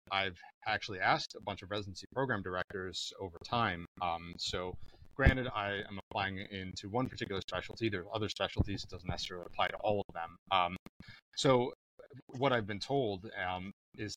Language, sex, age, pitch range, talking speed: English, male, 30-49, 95-110 Hz, 175 wpm